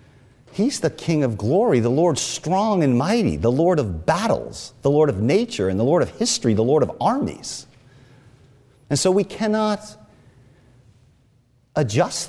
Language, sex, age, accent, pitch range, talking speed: English, male, 40-59, American, 120-165 Hz, 155 wpm